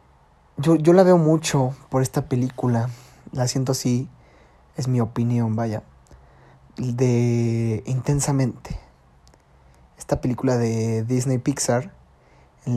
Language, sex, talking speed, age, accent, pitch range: Spanish, male, 110 wpm, 20-39, Mexican, 115-140 Hz